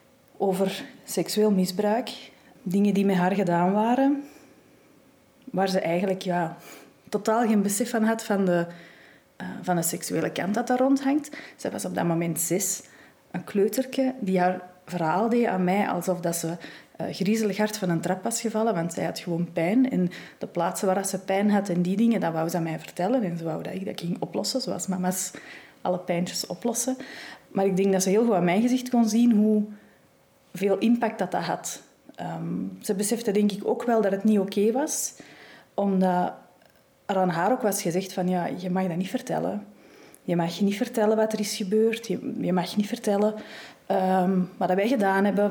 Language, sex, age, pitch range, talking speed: Dutch, female, 30-49, 180-220 Hz, 200 wpm